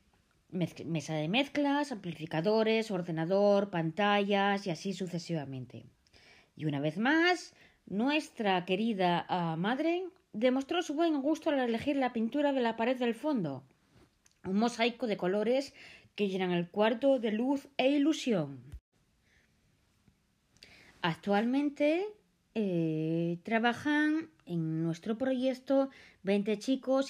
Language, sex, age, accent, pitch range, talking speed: Spanish, female, 20-39, Spanish, 170-265 Hz, 110 wpm